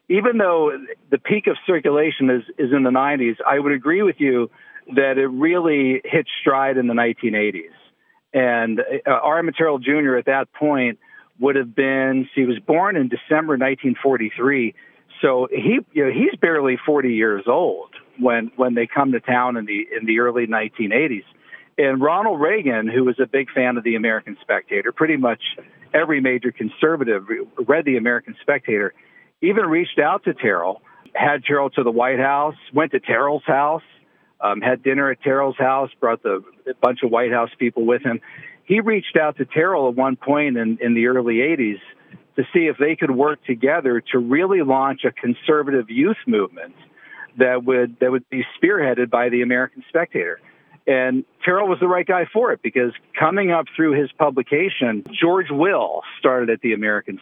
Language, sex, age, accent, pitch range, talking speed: English, male, 50-69, American, 120-150 Hz, 175 wpm